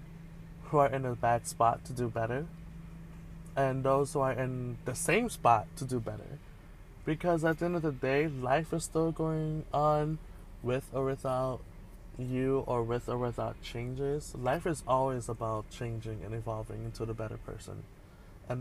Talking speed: 170 wpm